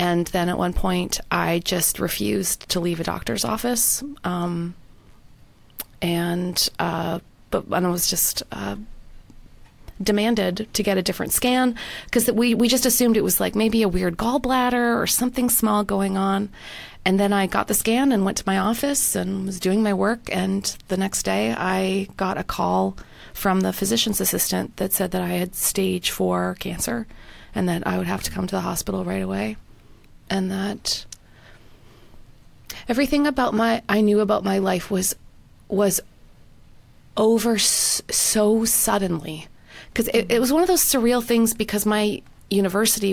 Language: English